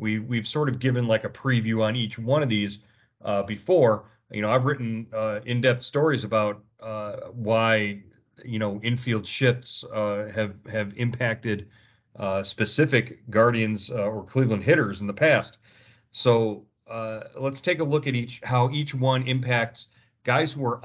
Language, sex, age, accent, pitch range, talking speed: English, male, 40-59, American, 105-120 Hz, 165 wpm